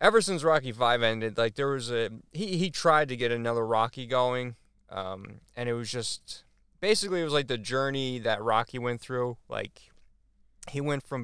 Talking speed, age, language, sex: 190 wpm, 20-39, English, male